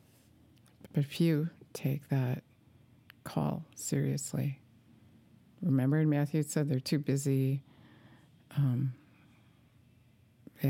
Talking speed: 90 wpm